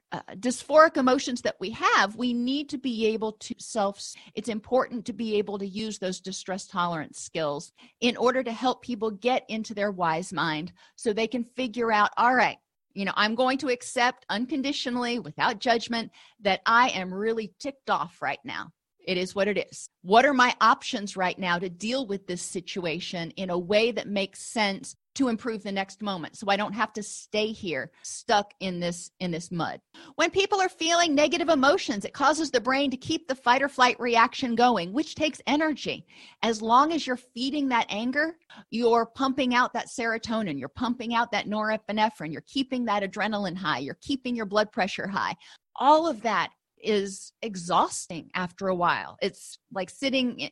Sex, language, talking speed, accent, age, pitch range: female, English, 185 wpm, American, 40-59, 195-255 Hz